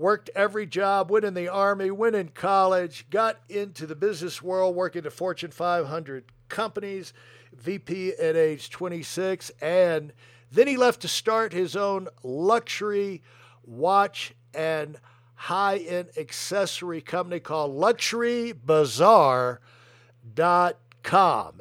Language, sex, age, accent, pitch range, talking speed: English, male, 60-79, American, 140-200 Hz, 115 wpm